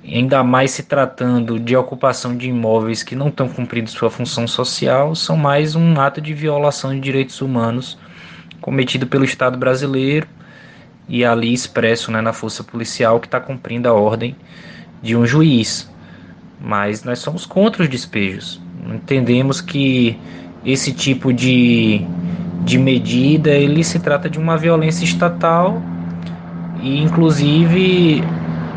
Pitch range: 115-155 Hz